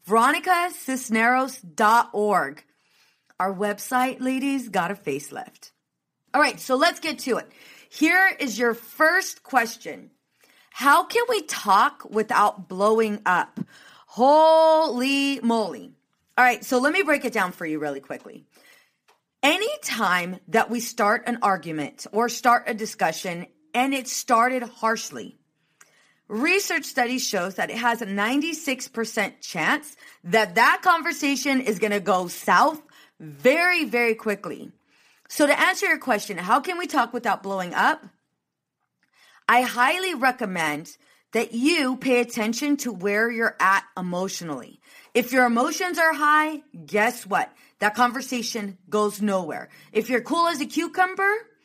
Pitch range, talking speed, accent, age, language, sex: 210-295 Hz, 135 wpm, American, 40-59, English, female